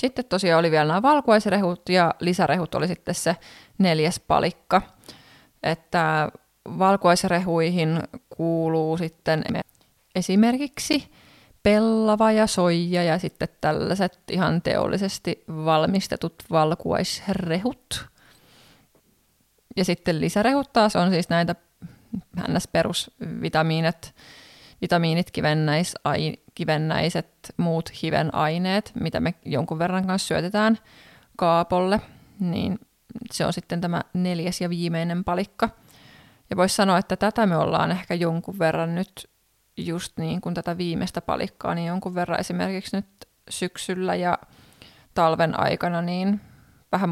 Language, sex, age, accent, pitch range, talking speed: Finnish, female, 20-39, native, 165-195 Hz, 110 wpm